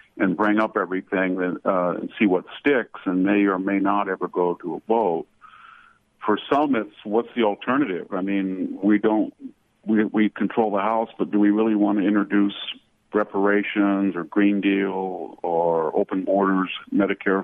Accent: American